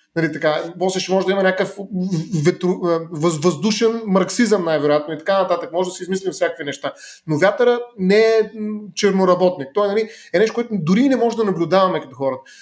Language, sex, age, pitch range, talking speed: Bulgarian, male, 30-49, 160-195 Hz, 180 wpm